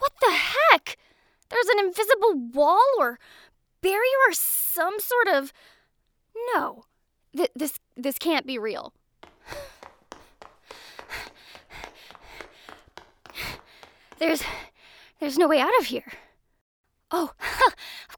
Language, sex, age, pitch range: English, female, 10-29, 260-420 Hz